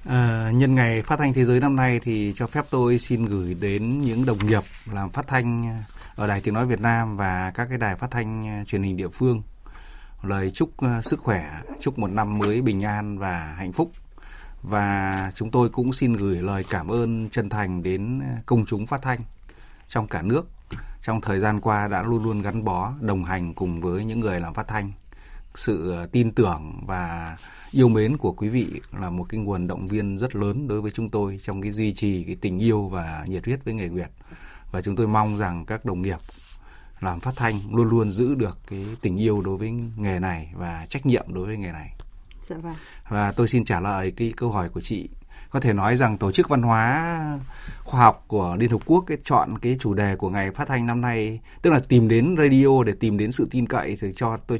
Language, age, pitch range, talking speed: Vietnamese, 20-39, 95-120 Hz, 220 wpm